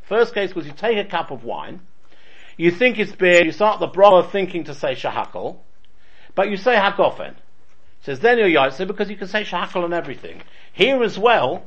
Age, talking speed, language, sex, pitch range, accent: 50-69, 200 wpm, English, male, 160-225 Hz, British